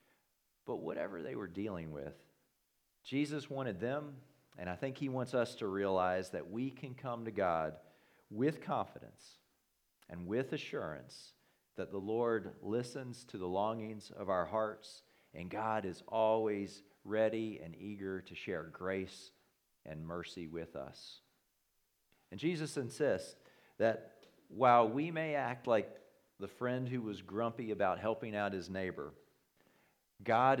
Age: 40-59